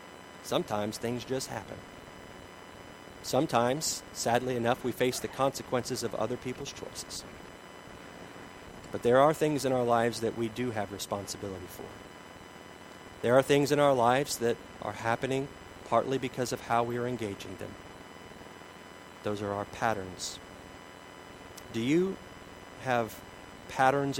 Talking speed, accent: 130 wpm, American